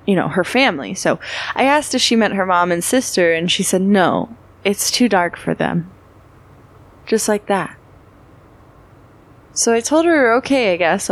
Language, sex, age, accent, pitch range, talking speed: English, female, 20-39, American, 145-205 Hz, 180 wpm